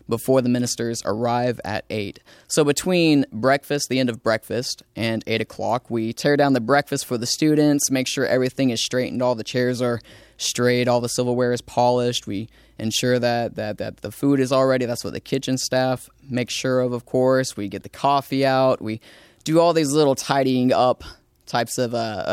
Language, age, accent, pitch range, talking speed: English, 20-39, American, 115-135 Hz, 195 wpm